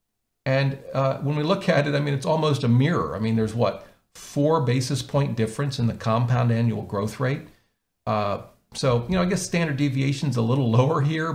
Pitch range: 115-140 Hz